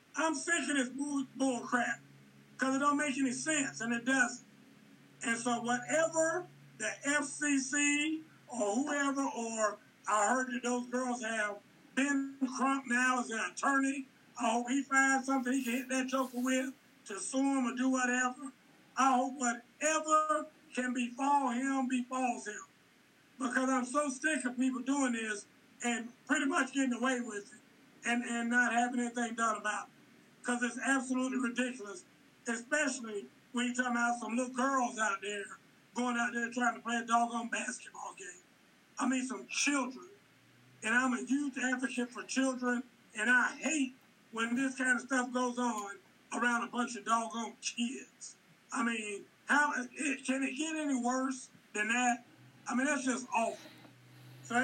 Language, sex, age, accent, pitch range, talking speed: English, male, 50-69, American, 235-270 Hz, 165 wpm